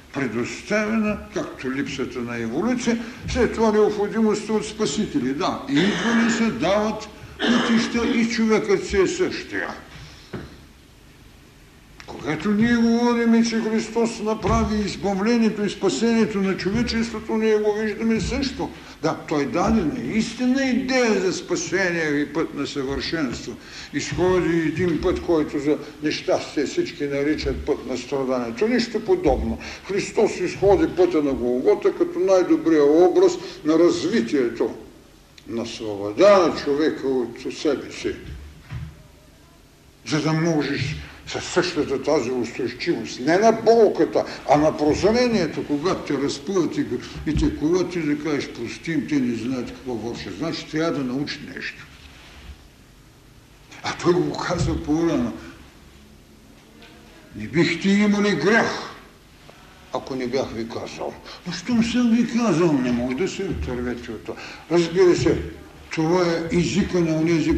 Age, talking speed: 60-79, 130 wpm